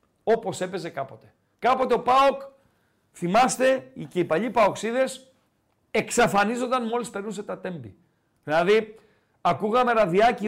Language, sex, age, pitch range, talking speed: Greek, male, 50-69, 160-235 Hz, 110 wpm